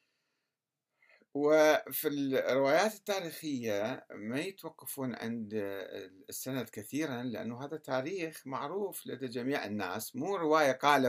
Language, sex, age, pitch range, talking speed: Arabic, male, 60-79, 120-190 Hz, 95 wpm